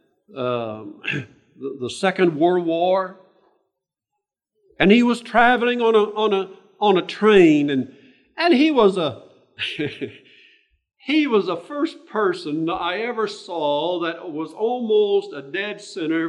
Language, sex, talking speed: English, male, 135 wpm